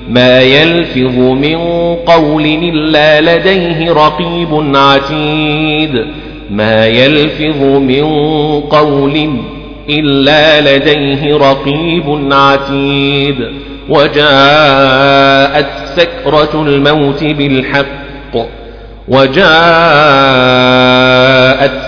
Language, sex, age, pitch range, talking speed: Arabic, male, 40-59, 135-155 Hz, 65 wpm